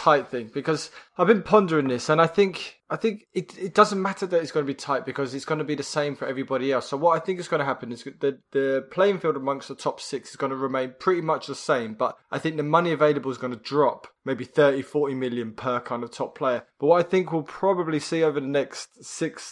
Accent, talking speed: British, 270 wpm